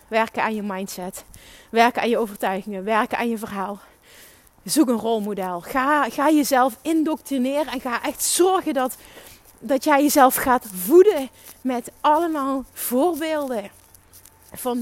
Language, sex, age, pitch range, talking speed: Dutch, female, 30-49, 225-290 Hz, 135 wpm